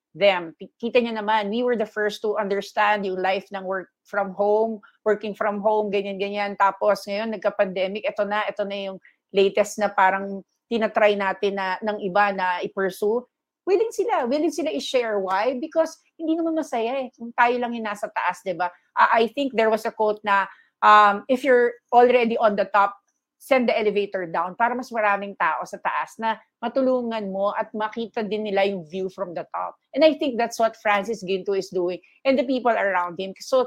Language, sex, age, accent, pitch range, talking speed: English, female, 40-59, Filipino, 200-275 Hz, 190 wpm